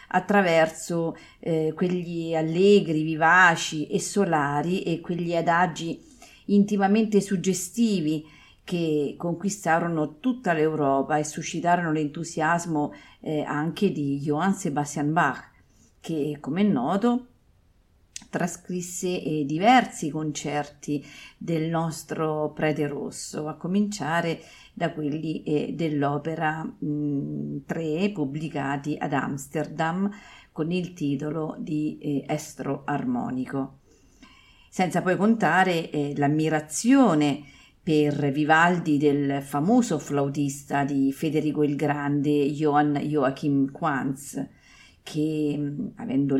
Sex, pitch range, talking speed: female, 145-175 Hz, 95 wpm